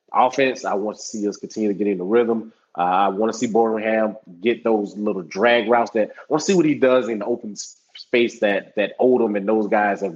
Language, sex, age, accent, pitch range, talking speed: English, male, 20-39, American, 100-115 Hz, 250 wpm